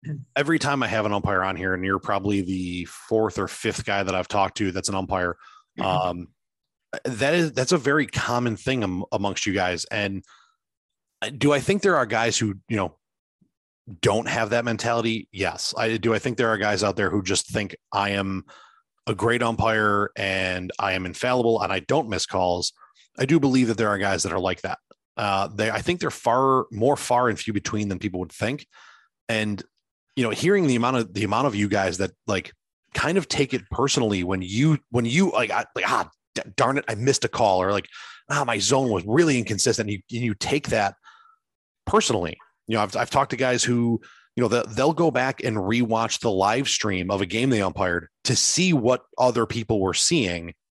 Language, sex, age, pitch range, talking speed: English, male, 30-49, 100-125 Hz, 210 wpm